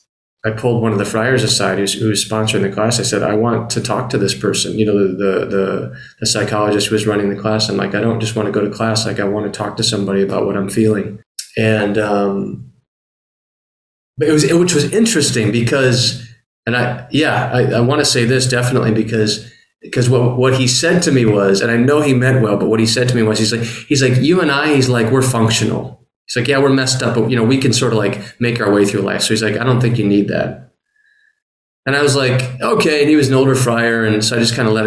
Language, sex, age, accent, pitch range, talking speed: English, male, 30-49, American, 105-130 Hz, 265 wpm